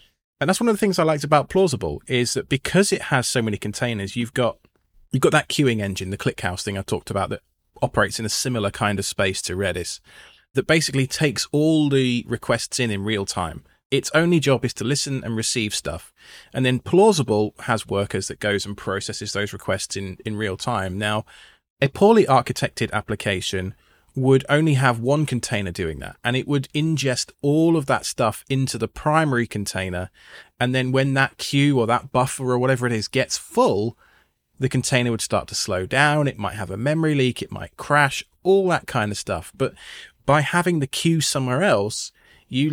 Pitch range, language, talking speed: 105-140 Hz, English, 200 wpm